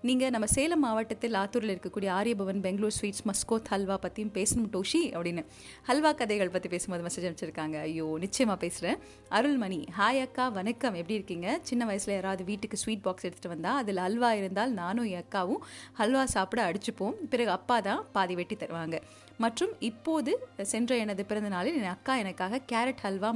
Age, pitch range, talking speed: 30-49, 180-245 Hz, 160 wpm